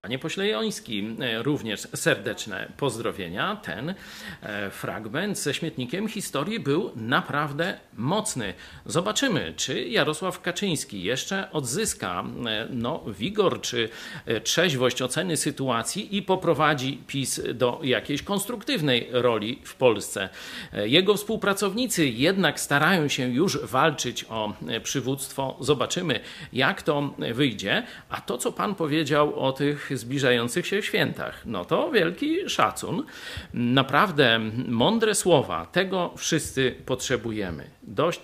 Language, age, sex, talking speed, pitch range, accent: Polish, 50-69, male, 110 wpm, 130-190 Hz, native